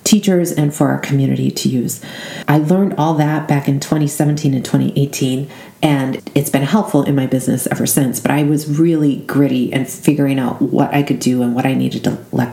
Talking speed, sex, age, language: 205 wpm, female, 40-59, English